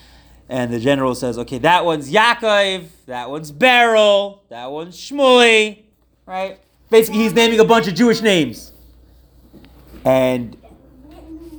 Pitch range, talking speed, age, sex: 130-210 Hz, 125 wpm, 30-49, male